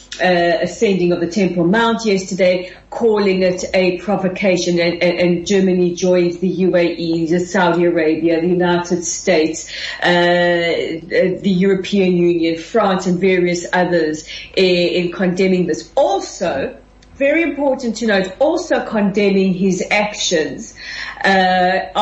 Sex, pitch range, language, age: female, 180-215 Hz, English, 40-59